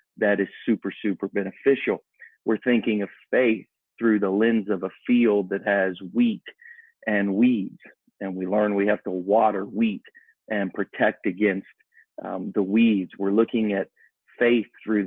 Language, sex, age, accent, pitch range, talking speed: English, male, 40-59, American, 100-120 Hz, 155 wpm